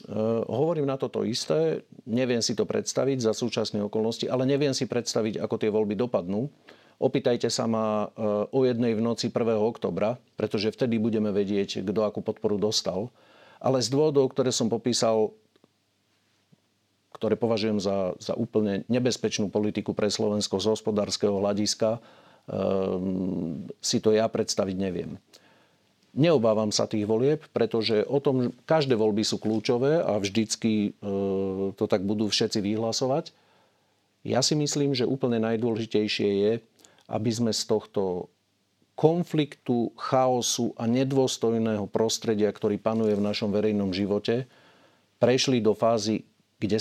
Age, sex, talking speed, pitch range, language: 50-69, male, 135 wpm, 105-125 Hz, Slovak